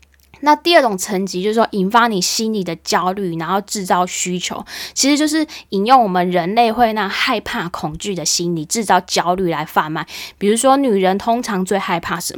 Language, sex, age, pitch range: Chinese, female, 10-29, 175-230 Hz